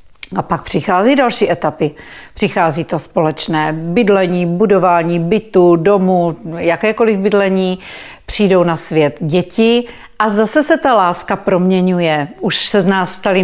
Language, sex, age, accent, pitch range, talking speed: Czech, female, 40-59, native, 185-215 Hz, 130 wpm